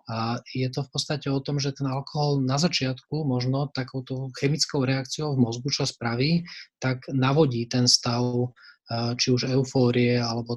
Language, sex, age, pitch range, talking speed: Slovak, male, 20-39, 125-140 Hz, 160 wpm